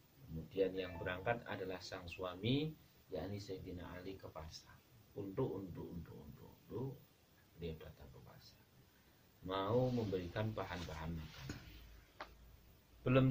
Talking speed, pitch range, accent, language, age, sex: 95 wpm, 95-125 Hz, native, Indonesian, 40-59, male